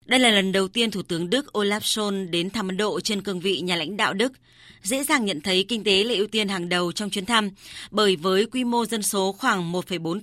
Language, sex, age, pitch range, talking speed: Vietnamese, female, 20-39, 185-230 Hz, 250 wpm